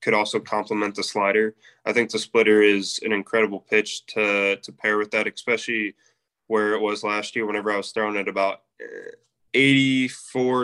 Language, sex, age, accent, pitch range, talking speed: English, male, 10-29, American, 105-120 Hz, 175 wpm